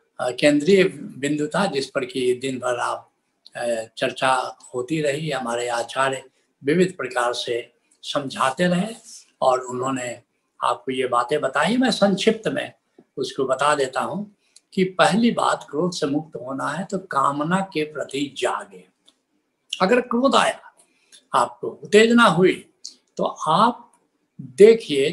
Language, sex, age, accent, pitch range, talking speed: Hindi, male, 70-89, native, 135-205 Hz, 125 wpm